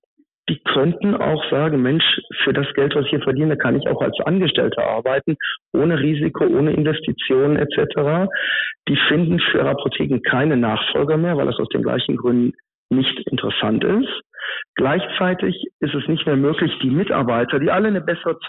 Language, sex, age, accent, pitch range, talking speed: German, male, 50-69, German, 135-170 Hz, 165 wpm